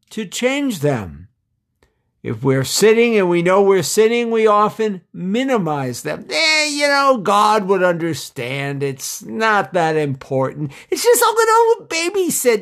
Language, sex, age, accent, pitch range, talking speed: English, male, 60-79, American, 140-210 Hz, 145 wpm